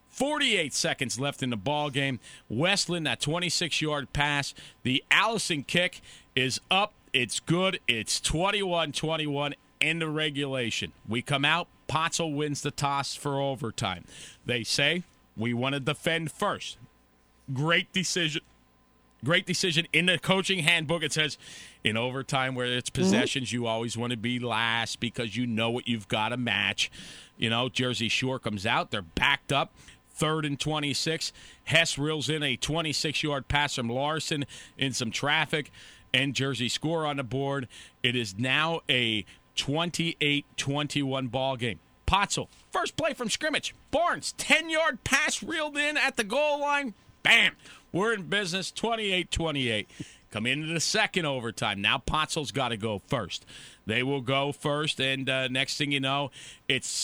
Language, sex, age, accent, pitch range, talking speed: English, male, 40-59, American, 125-165 Hz, 155 wpm